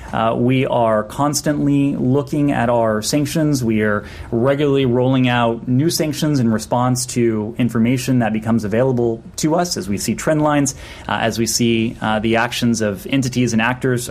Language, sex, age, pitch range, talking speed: English, male, 30-49, 115-140 Hz, 170 wpm